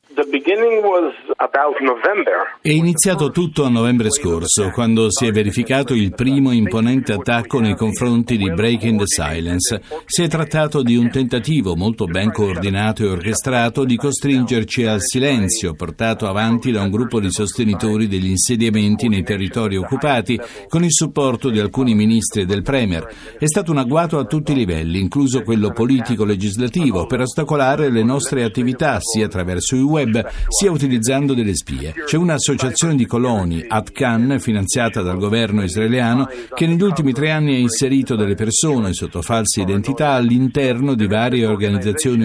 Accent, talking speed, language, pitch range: native, 150 wpm, Italian, 105-135 Hz